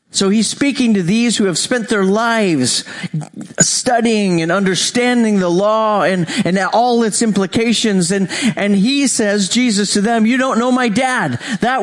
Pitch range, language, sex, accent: 195-245 Hz, English, male, American